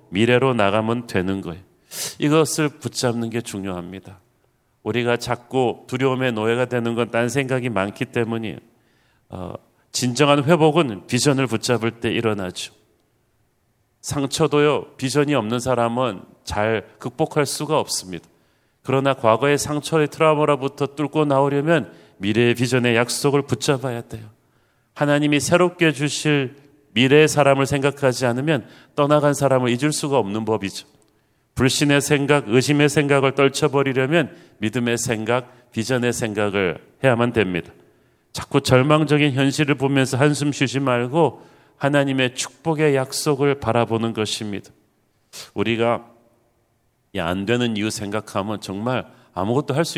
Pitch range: 115-145 Hz